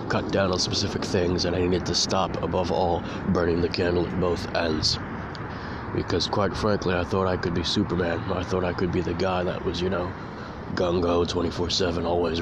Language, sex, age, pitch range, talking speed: English, male, 20-39, 85-110 Hz, 200 wpm